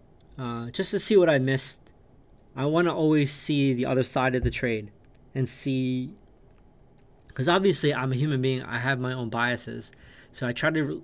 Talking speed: 190 wpm